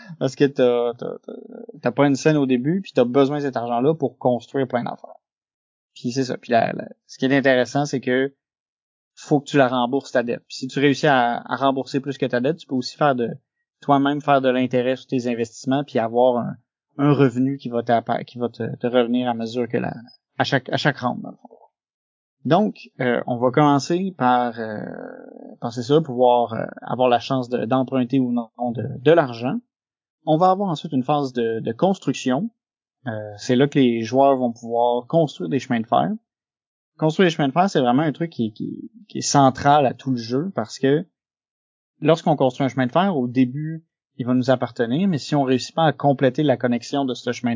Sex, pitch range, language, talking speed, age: male, 125-150 Hz, French, 220 wpm, 30-49